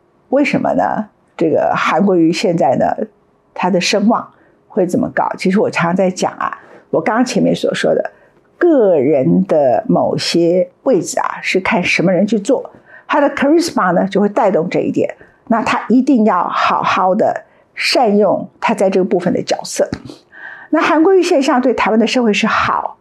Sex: female